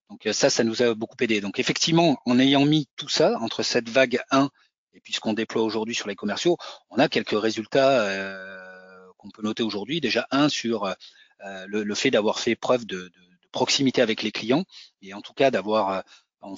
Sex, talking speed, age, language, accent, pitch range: male, 205 wpm, 40-59, French, French, 105-135 Hz